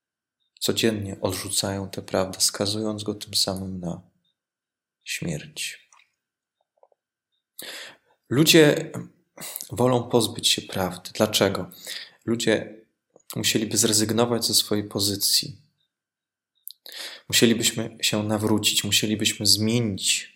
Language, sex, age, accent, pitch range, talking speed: Polish, male, 20-39, native, 95-115 Hz, 80 wpm